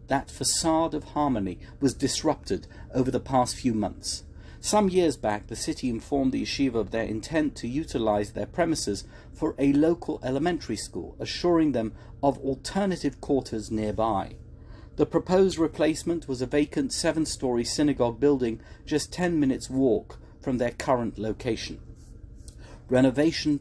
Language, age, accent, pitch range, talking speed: English, 50-69, British, 110-150 Hz, 140 wpm